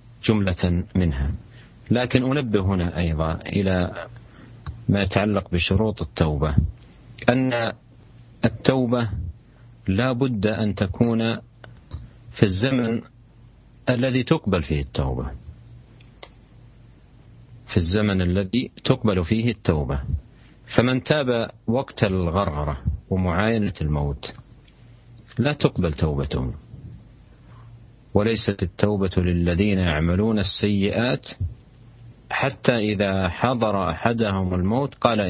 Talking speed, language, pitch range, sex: 85 wpm, Indonesian, 95-120 Hz, male